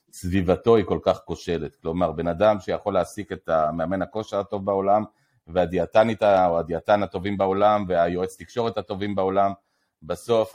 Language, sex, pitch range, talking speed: Hebrew, male, 90-135 Hz, 140 wpm